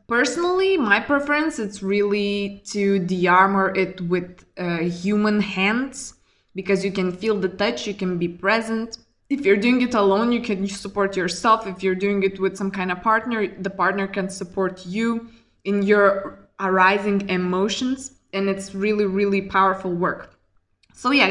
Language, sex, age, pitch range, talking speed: English, female, 20-39, 190-230 Hz, 160 wpm